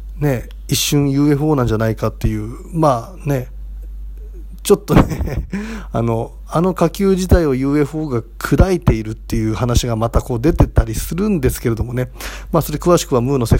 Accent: native